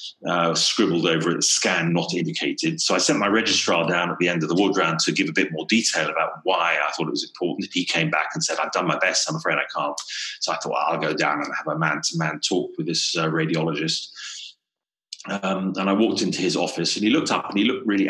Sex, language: male, English